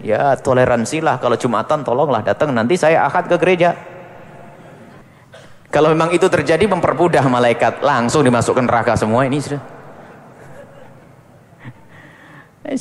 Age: 30-49